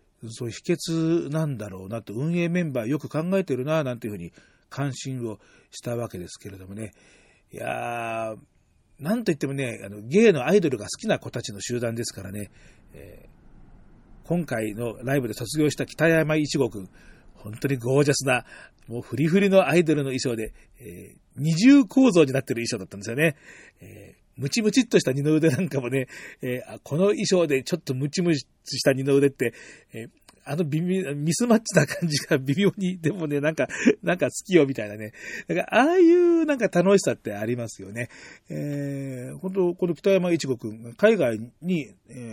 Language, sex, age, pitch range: Japanese, male, 40-59, 115-170 Hz